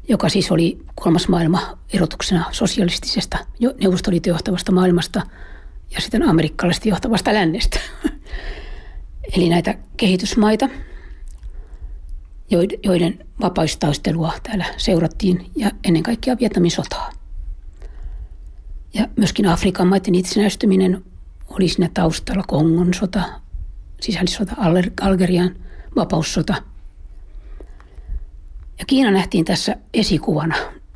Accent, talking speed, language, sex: native, 85 wpm, Finnish, female